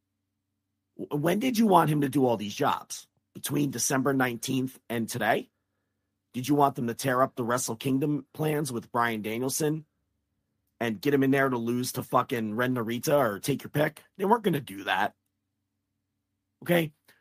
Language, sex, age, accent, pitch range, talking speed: English, male, 40-59, American, 100-145 Hz, 175 wpm